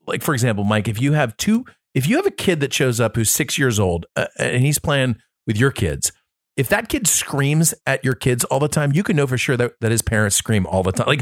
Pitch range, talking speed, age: 110-140 Hz, 275 wpm, 40-59